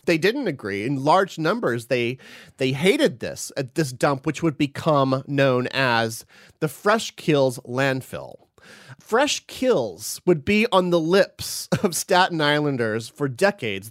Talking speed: 145 wpm